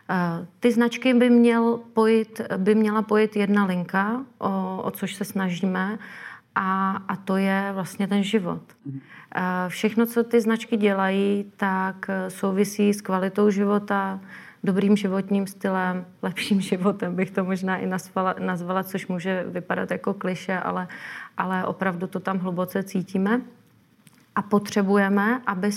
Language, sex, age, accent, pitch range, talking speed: Czech, female, 30-49, native, 190-215 Hz, 135 wpm